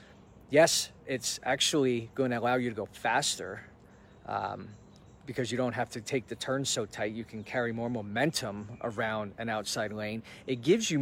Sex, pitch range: male, 110-130 Hz